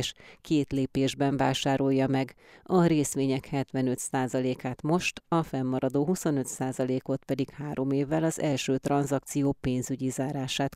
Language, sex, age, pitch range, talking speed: Hungarian, female, 30-49, 135-145 Hz, 105 wpm